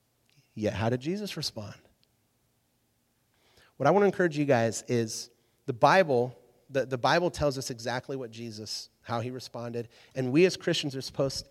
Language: English